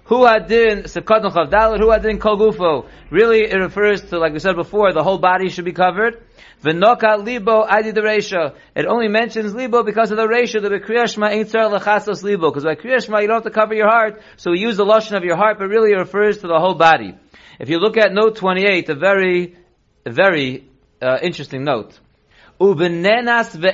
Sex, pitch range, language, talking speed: male, 180-220 Hz, English, 145 wpm